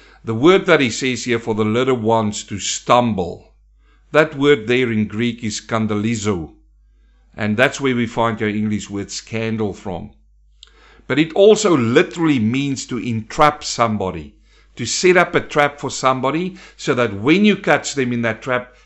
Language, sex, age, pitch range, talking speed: English, male, 50-69, 105-145 Hz, 170 wpm